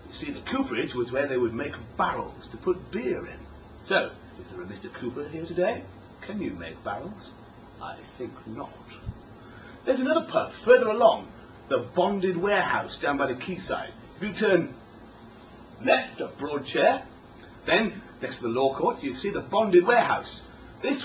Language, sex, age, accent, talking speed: English, male, 40-59, British, 170 wpm